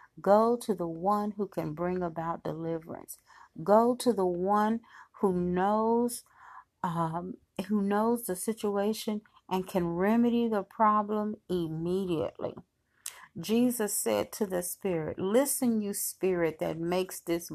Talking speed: 125 wpm